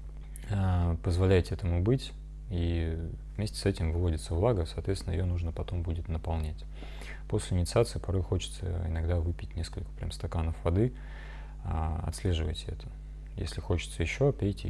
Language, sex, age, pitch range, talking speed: Russian, male, 30-49, 80-95 Hz, 125 wpm